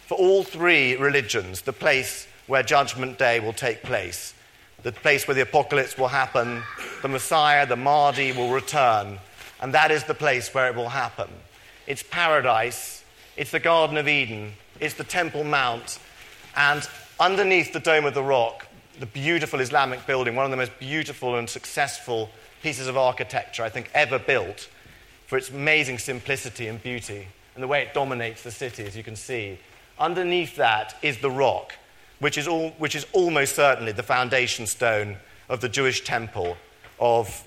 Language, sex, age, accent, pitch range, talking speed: English, male, 40-59, British, 115-150 Hz, 170 wpm